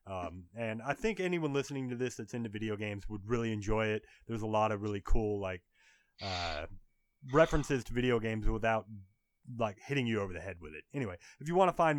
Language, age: English, 30-49